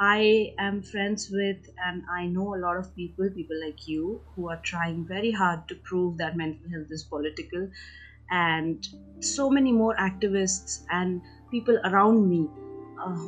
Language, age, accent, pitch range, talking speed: Hindi, 30-49, native, 175-210 Hz, 165 wpm